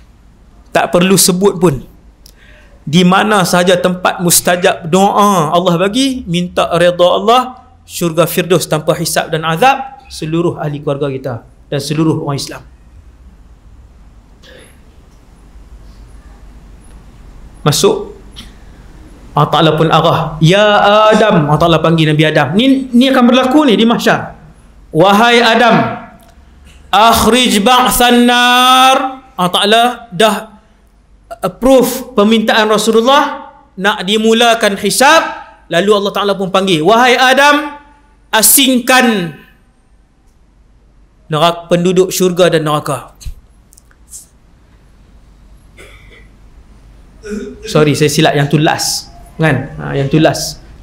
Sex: male